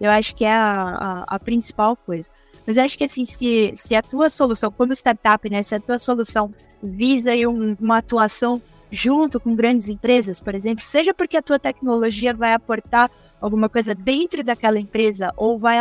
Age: 20-39